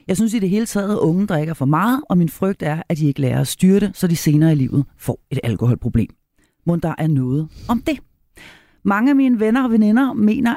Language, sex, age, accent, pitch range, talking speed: Danish, female, 40-59, native, 155-220 Hz, 250 wpm